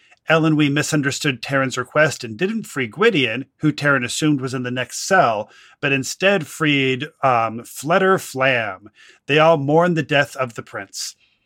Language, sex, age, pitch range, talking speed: English, male, 40-59, 130-155 Hz, 150 wpm